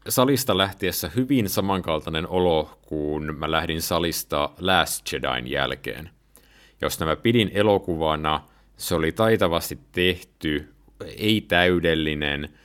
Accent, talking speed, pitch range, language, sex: native, 105 wpm, 75-95 Hz, Finnish, male